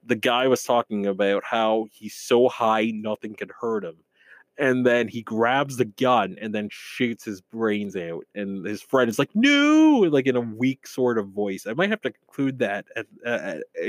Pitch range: 105-130 Hz